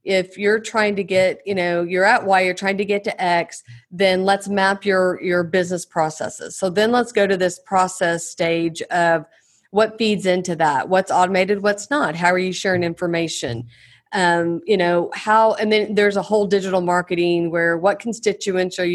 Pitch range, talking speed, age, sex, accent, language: 175-200 Hz, 190 wpm, 40-59, female, American, English